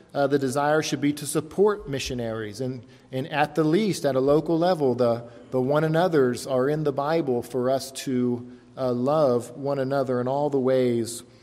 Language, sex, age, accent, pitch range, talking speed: English, male, 40-59, American, 125-150 Hz, 190 wpm